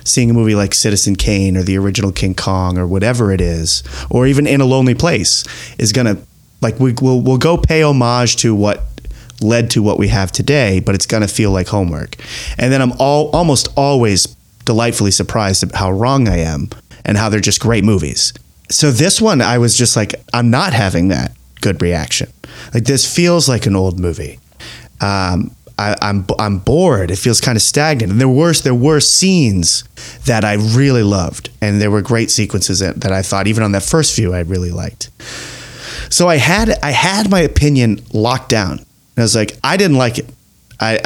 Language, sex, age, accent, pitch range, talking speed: English, male, 30-49, American, 95-135 Hz, 205 wpm